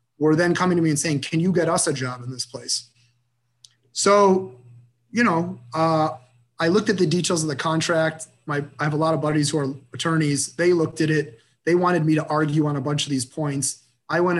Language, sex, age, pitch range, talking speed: English, male, 30-49, 125-155 Hz, 230 wpm